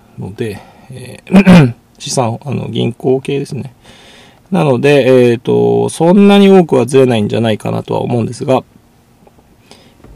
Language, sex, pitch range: Japanese, male, 115-160 Hz